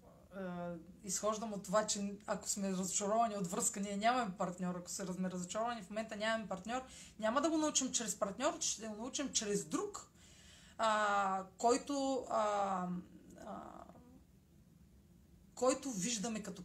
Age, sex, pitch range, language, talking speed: 30-49, female, 185-245 Hz, Bulgarian, 135 wpm